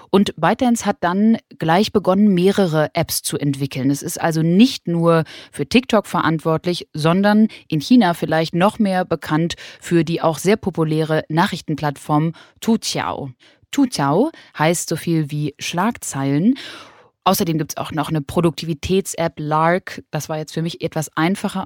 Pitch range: 160-190 Hz